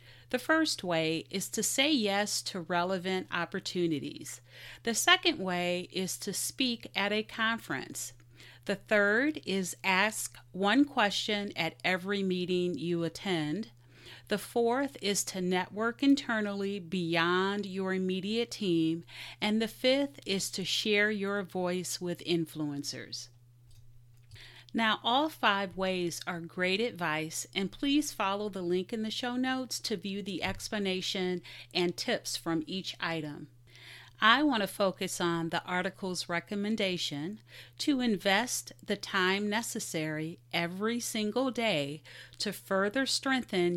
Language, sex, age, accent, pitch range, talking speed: English, female, 40-59, American, 160-210 Hz, 130 wpm